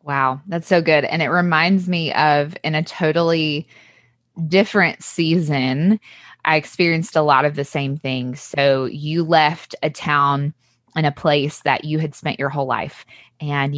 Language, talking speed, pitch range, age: English, 165 wpm, 145-175 Hz, 20-39